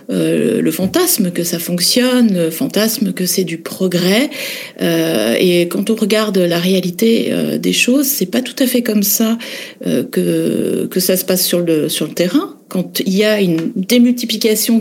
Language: French